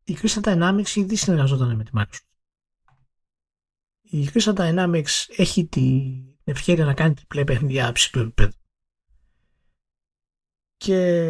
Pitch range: 130-185 Hz